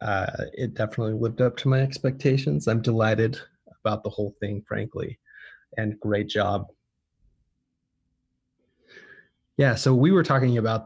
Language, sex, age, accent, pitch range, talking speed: English, male, 20-39, American, 105-125 Hz, 135 wpm